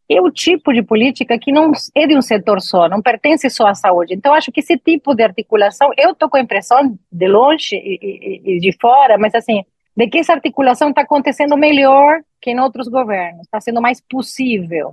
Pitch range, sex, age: 220-275 Hz, female, 30-49